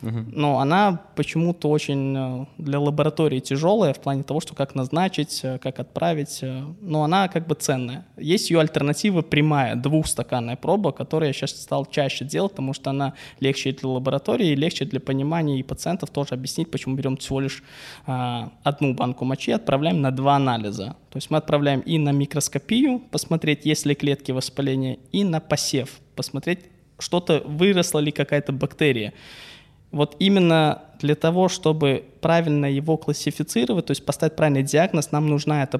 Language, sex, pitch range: Russian, male, 135-155 Hz